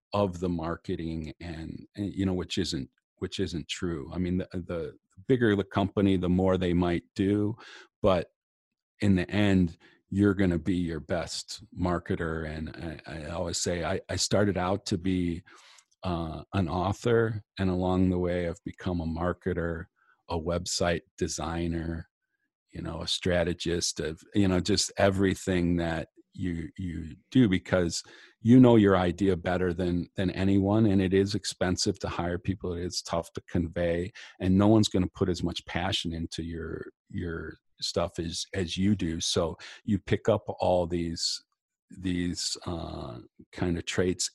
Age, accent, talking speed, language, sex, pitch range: 40-59, American, 165 wpm, English, male, 85-95 Hz